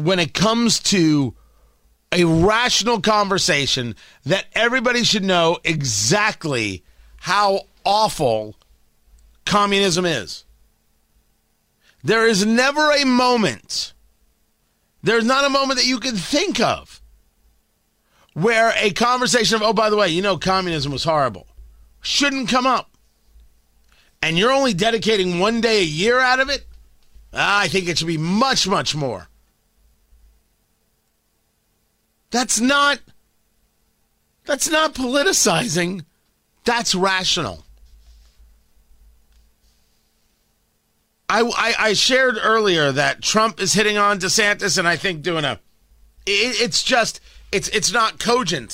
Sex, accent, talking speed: male, American, 115 wpm